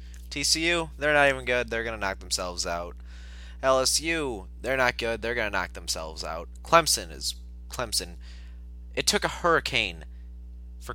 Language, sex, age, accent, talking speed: English, male, 20-39, American, 160 wpm